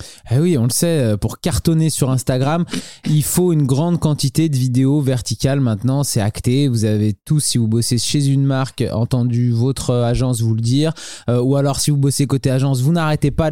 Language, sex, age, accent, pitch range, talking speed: French, male, 20-39, French, 125-165 Hz, 205 wpm